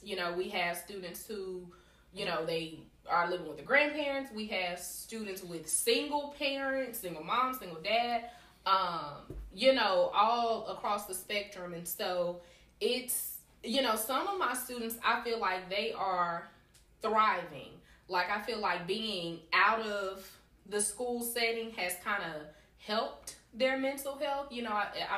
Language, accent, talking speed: English, American, 155 wpm